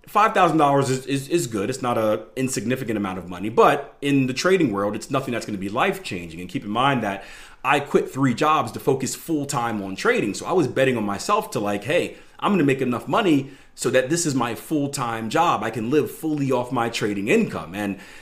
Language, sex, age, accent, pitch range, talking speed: English, male, 30-49, American, 110-150 Hz, 225 wpm